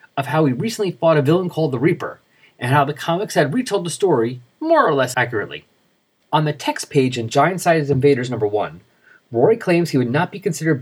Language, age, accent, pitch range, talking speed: English, 30-49, American, 130-175 Hz, 215 wpm